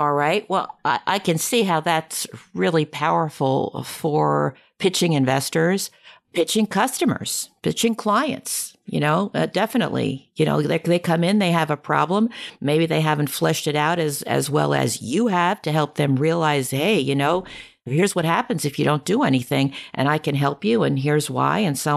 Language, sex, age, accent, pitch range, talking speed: English, female, 50-69, American, 145-195 Hz, 190 wpm